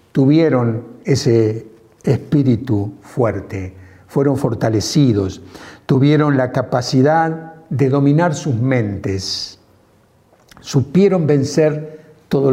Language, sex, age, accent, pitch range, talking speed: Spanish, male, 60-79, Argentinian, 110-145 Hz, 75 wpm